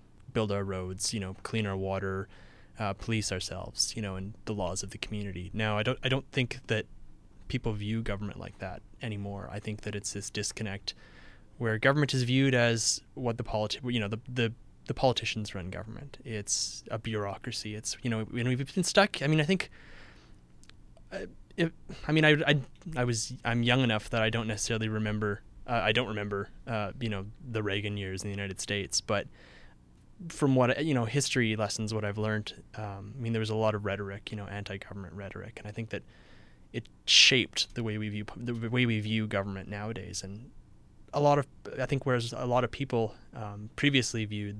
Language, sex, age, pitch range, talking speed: English, male, 20-39, 100-120 Hz, 205 wpm